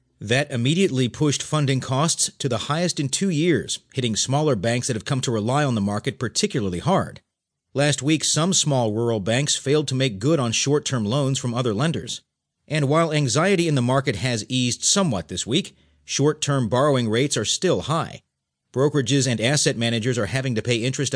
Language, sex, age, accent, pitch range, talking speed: English, male, 40-59, American, 110-145 Hz, 185 wpm